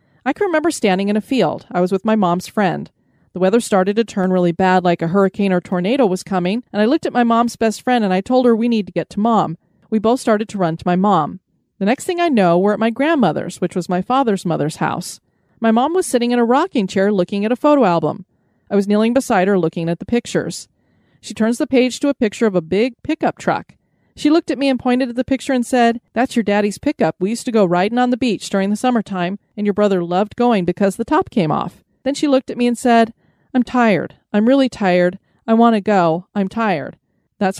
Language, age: English, 30-49